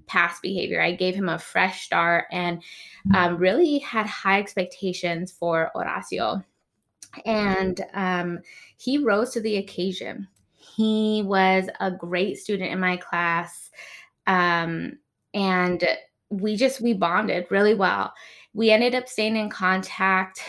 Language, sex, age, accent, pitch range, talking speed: English, female, 20-39, American, 180-215 Hz, 130 wpm